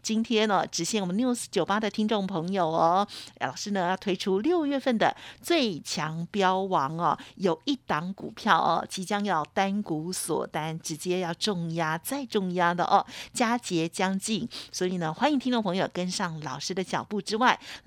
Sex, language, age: female, Chinese, 50-69